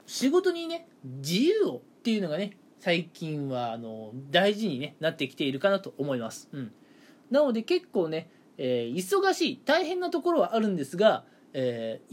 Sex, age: male, 20-39